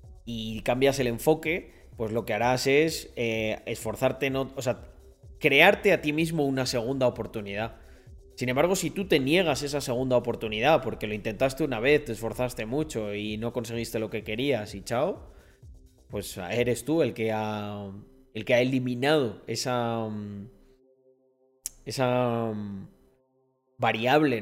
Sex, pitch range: male, 110-140 Hz